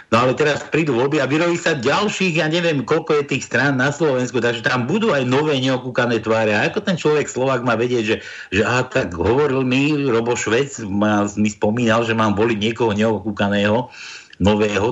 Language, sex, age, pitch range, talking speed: Slovak, male, 60-79, 105-135 Hz, 185 wpm